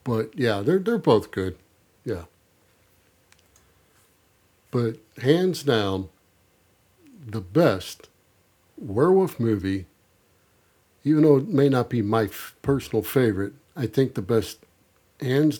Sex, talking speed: male, 110 wpm